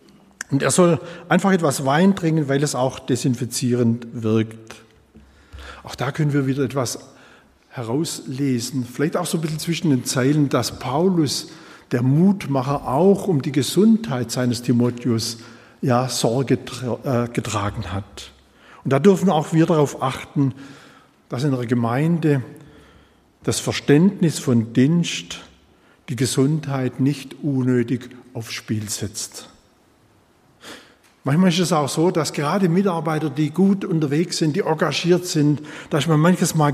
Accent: German